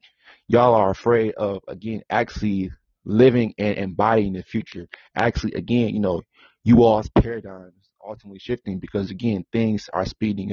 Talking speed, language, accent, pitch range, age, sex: 150 wpm, English, American, 100-120 Hz, 30-49, male